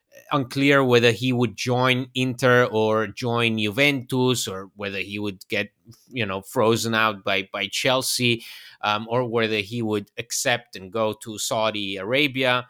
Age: 30-49